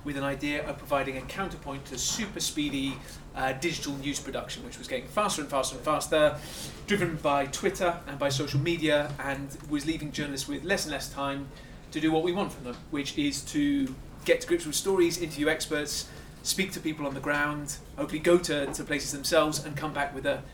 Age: 30-49